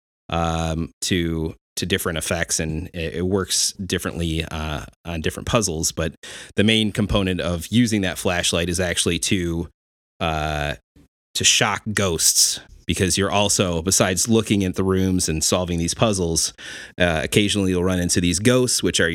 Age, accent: 30-49, American